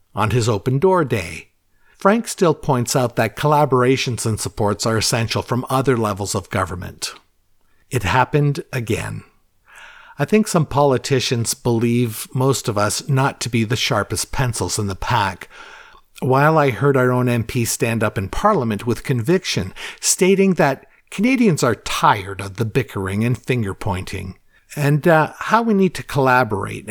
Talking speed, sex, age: 155 wpm, male, 50-69